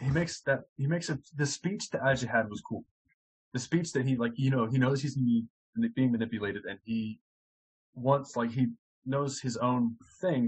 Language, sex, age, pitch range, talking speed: English, male, 20-39, 120-165 Hz, 190 wpm